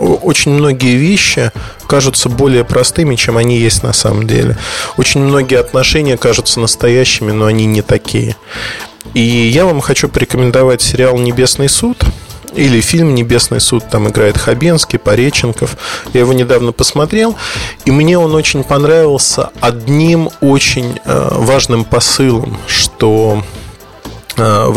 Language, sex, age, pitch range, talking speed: Russian, male, 20-39, 115-145 Hz, 125 wpm